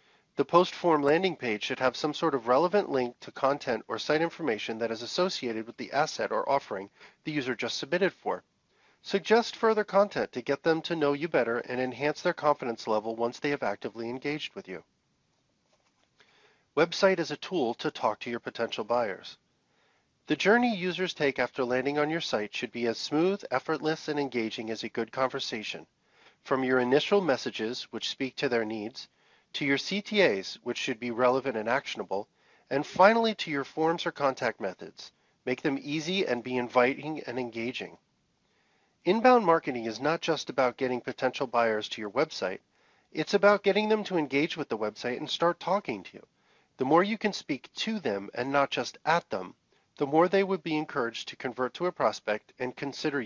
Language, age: English, 40-59